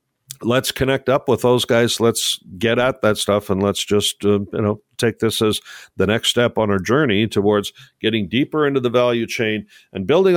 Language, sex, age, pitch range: English, male, 50-69, 95-120 Hz